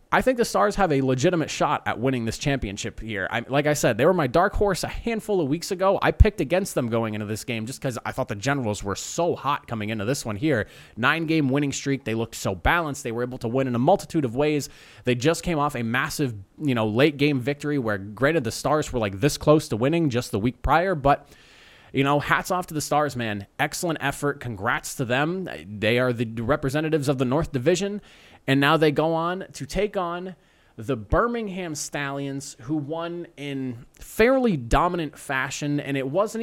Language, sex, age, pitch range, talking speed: English, male, 20-39, 120-160 Hz, 215 wpm